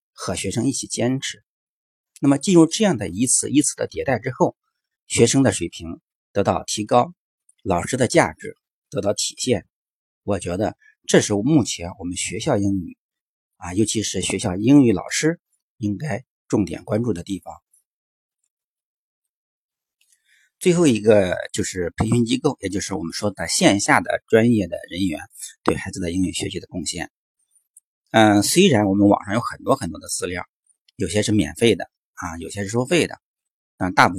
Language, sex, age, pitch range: Chinese, male, 50-69, 95-150 Hz